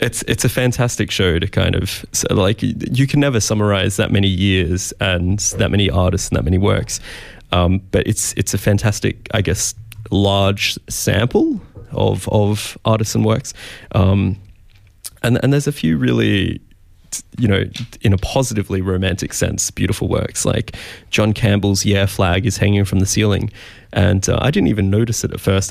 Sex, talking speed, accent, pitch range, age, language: male, 175 wpm, Australian, 95-110 Hz, 20-39, English